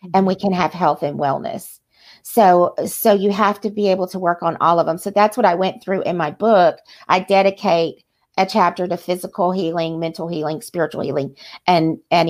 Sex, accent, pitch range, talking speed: female, American, 165-200 Hz, 205 wpm